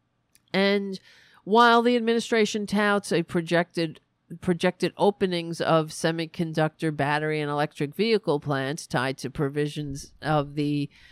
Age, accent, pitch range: 40-59, American, 150-195 Hz